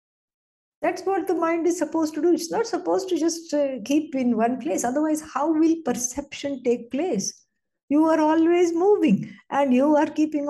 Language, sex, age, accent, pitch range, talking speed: English, female, 60-79, Indian, 220-305 Hz, 185 wpm